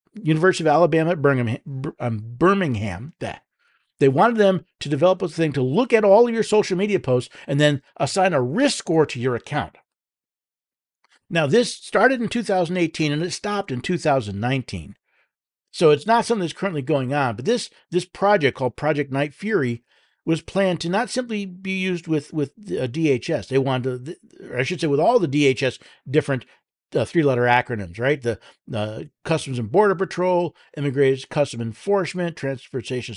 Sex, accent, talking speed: male, American, 175 wpm